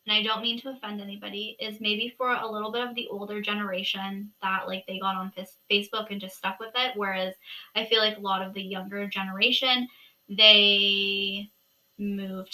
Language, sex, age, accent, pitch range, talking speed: English, female, 10-29, American, 195-220 Hz, 190 wpm